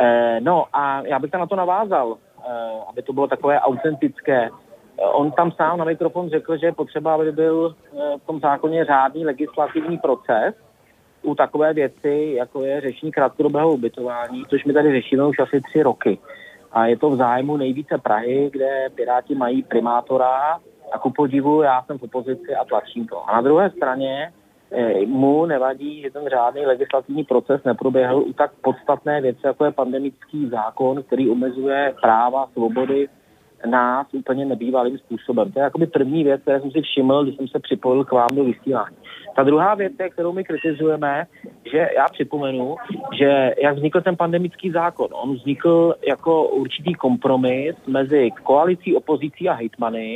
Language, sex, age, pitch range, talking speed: Czech, male, 30-49, 130-155 Hz, 165 wpm